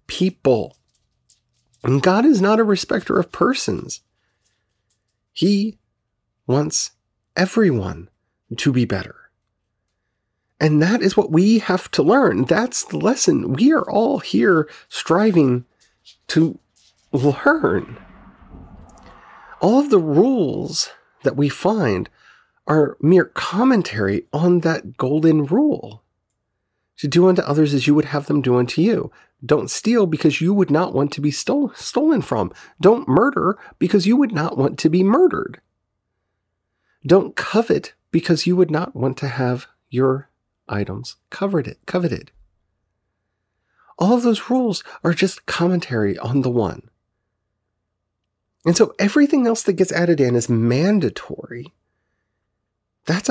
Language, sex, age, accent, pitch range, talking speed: English, male, 40-59, American, 110-180 Hz, 125 wpm